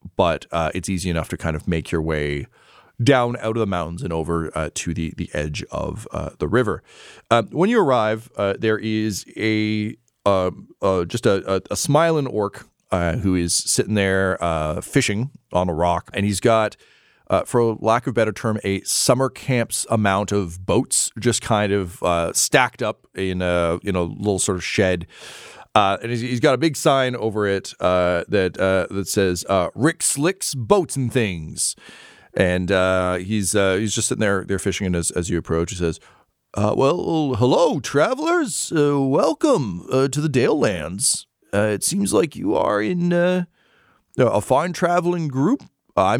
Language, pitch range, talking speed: English, 95-140 Hz, 185 wpm